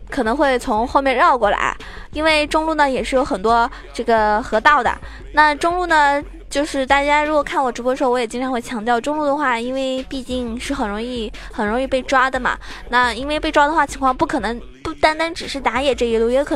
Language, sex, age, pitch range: Chinese, female, 20-39, 245-300 Hz